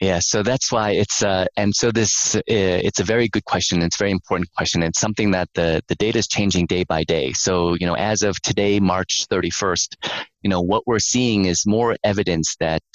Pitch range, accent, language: 85-105 Hz, American, English